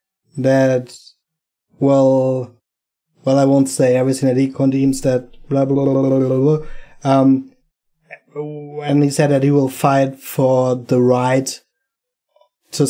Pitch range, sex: 125-140 Hz, male